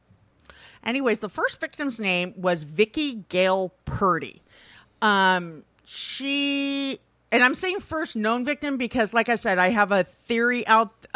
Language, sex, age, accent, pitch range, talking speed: English, female, 50-69, American, 190-275 Hz, 140 wpm